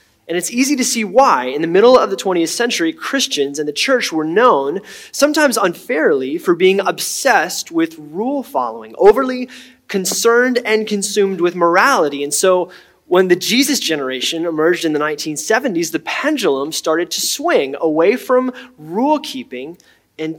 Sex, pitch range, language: male, 165-265 Hz, English